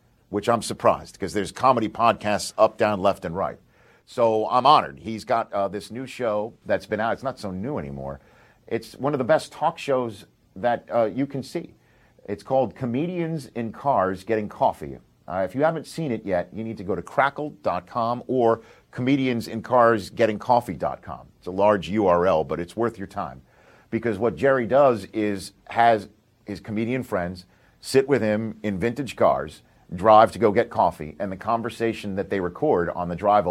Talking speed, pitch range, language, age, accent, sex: 180 wpm, 95-125 Hz, English, 50-69, American, male